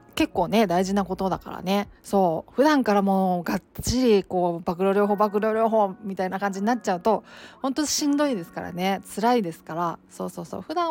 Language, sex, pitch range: Japanese, female, 175-220 Hz